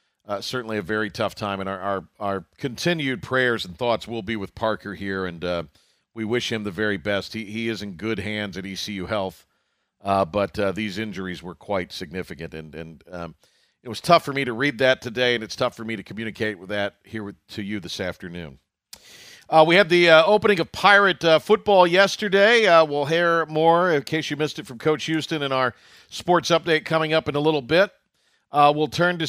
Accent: American